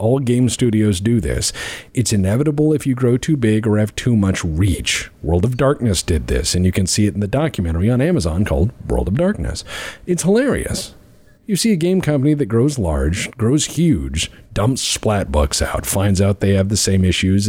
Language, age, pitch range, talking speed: English, 40-59, 90-125 Hz, 200 wpm